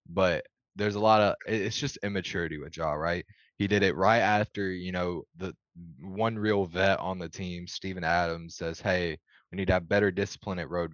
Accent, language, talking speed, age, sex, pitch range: American, English, 205 wpm, 20-39, male, 85-95 Hz